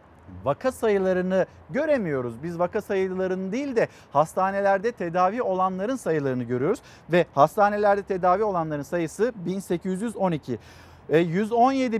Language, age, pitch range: Turkish, 50-69, 160-215 Hz